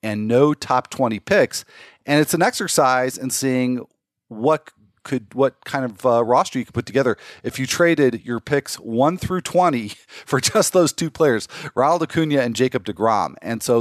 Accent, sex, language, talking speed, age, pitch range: American, male, English, 185 wpm, 40-59, 105-135 Hz